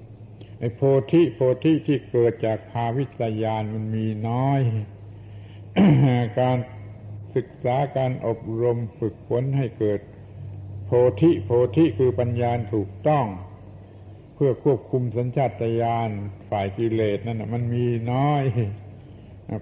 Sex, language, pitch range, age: male, Thai, 105-125 Hz, 70-89